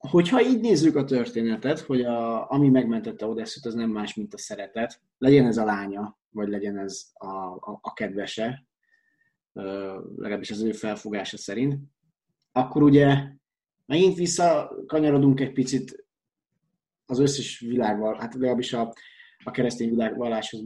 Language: Hungarian